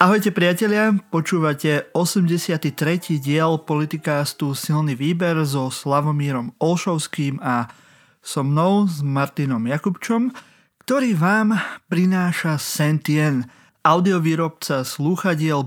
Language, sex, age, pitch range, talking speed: Slovak, male, 30-49, 135-175 Hz, 90 wpm